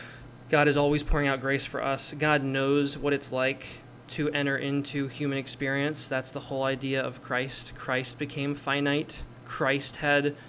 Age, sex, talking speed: 20-39, male, 165 wpm